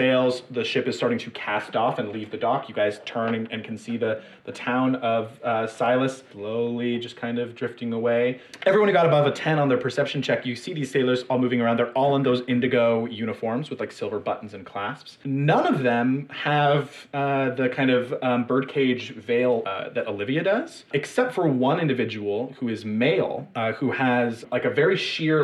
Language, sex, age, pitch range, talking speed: English, male, 30-49, 115-140 Hz, 205 wpm